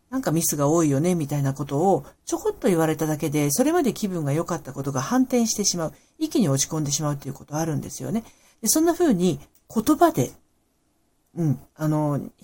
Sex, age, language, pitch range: female, 40-59, Japanese, 150-240 Hz